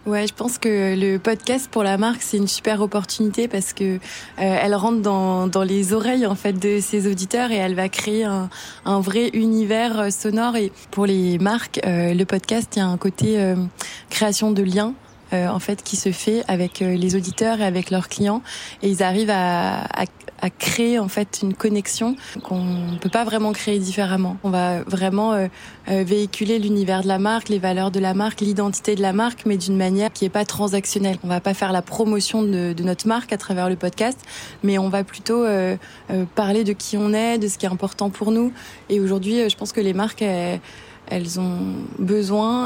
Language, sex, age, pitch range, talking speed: French, female, 20-39, 190-215 Hz, 205 wpm